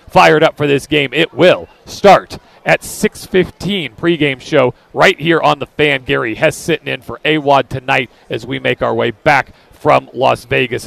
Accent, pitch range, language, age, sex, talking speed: American, 145-180 Hz, English, 40-59, male, 180 wpm